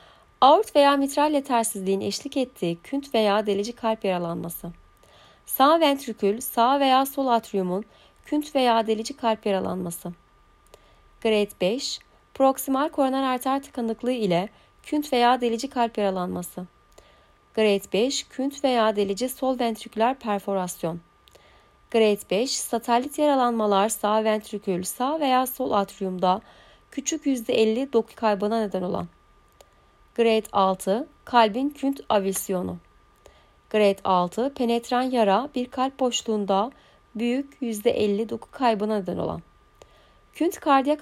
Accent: native